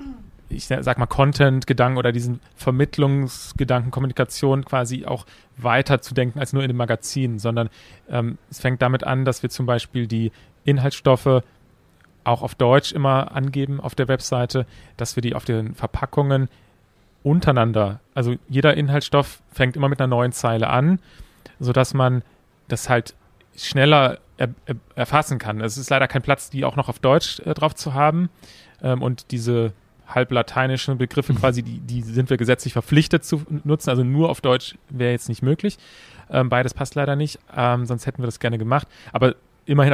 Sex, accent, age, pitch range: male, German, 40-59, 120-140 Hz